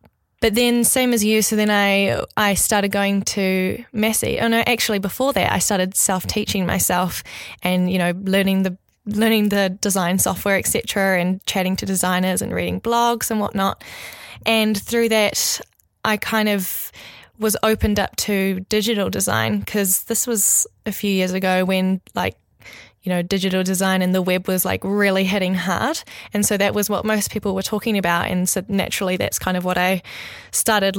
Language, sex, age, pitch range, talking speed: English, female, 10-29, 190-220 Hz, 180 wpm